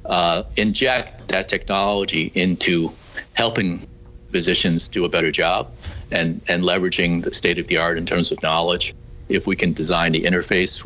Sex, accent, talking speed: male, American, 160 wpm